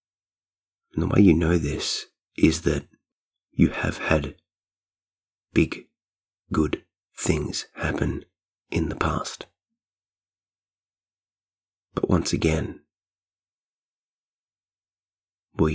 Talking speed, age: 85 wpm, 30-49